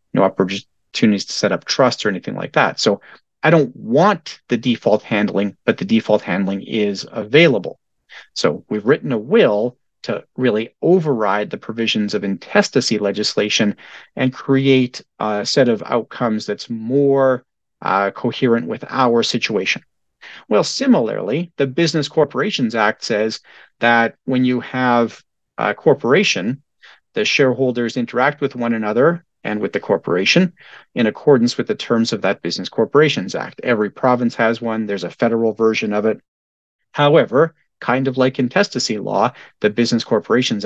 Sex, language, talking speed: male, English, 150 wpm